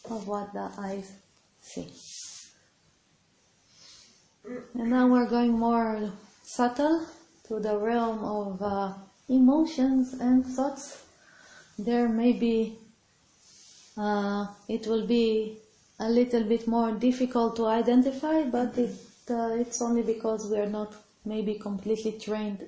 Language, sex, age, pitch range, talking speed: English, female, 30-49, 210-245 Hz, 115 wpm